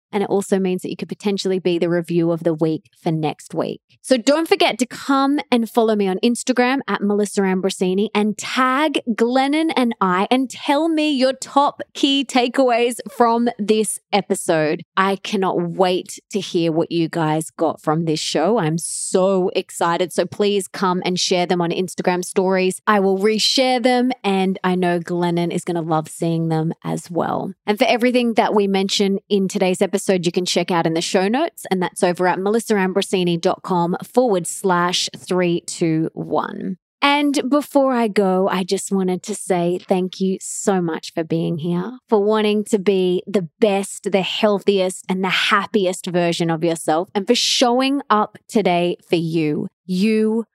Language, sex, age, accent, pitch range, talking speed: English, female, 20-39, Australian, 175-220 Hz, 180 wpm